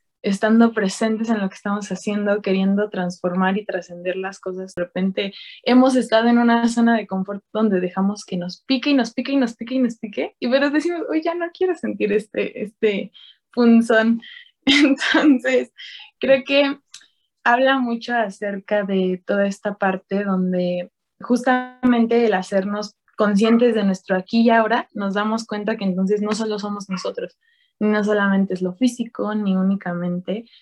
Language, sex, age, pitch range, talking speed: Spanish, female, 20-39, 195-255 Hz, 165 wpm